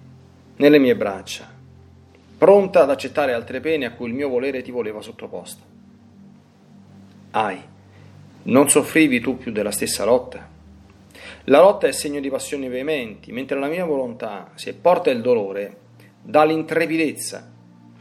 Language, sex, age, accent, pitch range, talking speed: Italian, male, 40-59, native, 100-155 Hz, 135 wpm